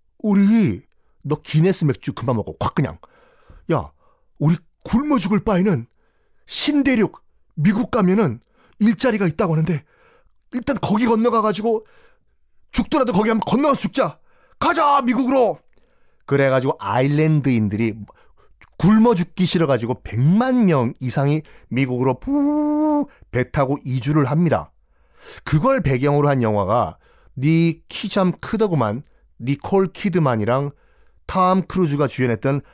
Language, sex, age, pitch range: Korean, male, 30-49, 130-205 Hz